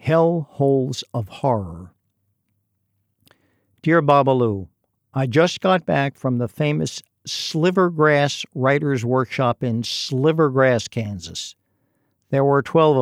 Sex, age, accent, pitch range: male, 60-79, American, 120-160 Hz